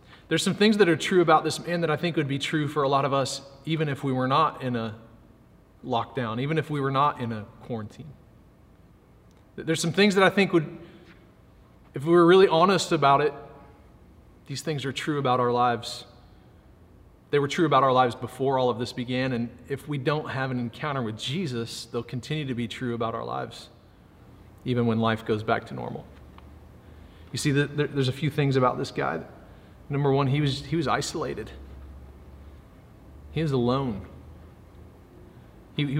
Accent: American